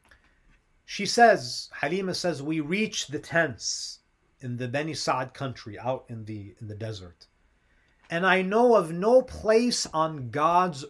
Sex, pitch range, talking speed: male, 125-180 Hz, 150 wpm